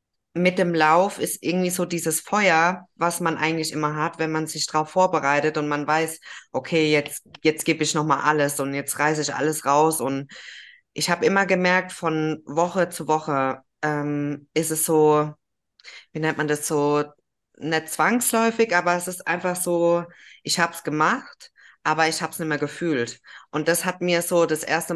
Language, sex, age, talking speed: German, female, 20-39, 185 wpm